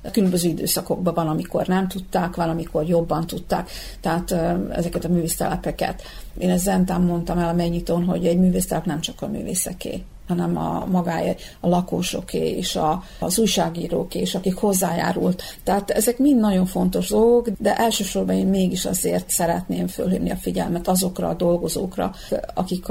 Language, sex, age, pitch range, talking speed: Hungarian, female, 50-69, 170-190 Hz, 150 wpm